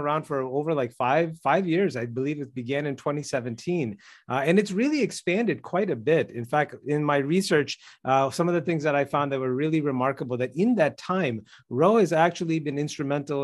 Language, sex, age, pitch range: English, male, 30-49, 130-165 Hz